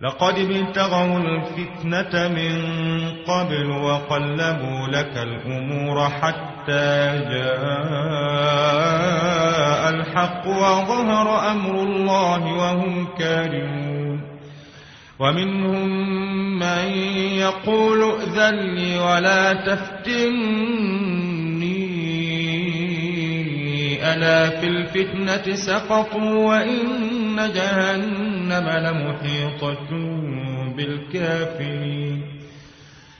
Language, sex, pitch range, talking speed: Arabic, male, 145-195 Hz, 50 wpm